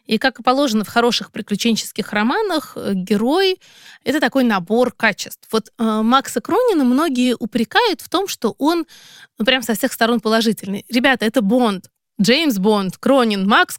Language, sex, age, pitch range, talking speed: Russian, female, 20-39, 215-260 Hz, 155 wpm